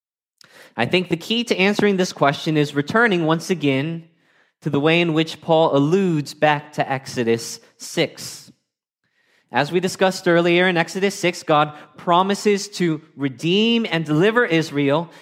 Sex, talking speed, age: male, 145 wpm, 20-39